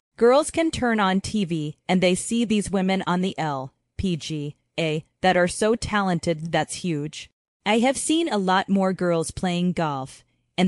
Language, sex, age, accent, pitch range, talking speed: English, female, 30-49, American, 165-200 Hz, 180 wpm